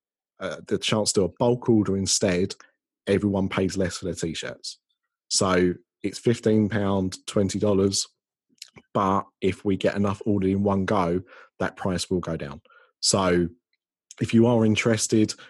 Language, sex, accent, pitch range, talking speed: English, male, British, 90-105 Hz, 155 wpm